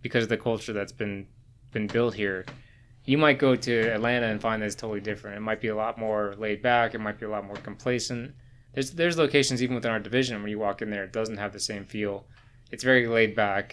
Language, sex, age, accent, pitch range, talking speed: English, male, 20-39, American, 105-125 Hz, 250 wpm